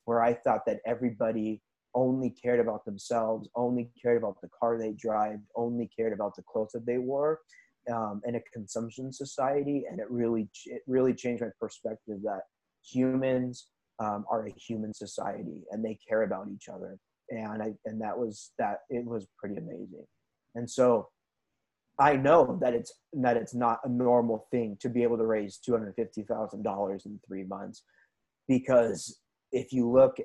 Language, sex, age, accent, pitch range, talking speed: English, male, 20-39, American, 110-125 Hz, 175 wpm